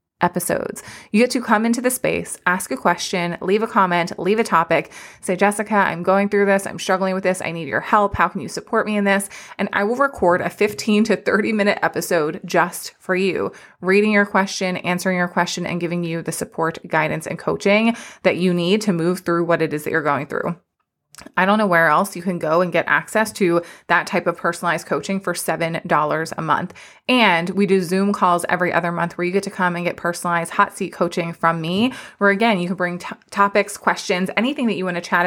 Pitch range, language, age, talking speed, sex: 170-200 Hz, English, 20-39, 225 wpm, female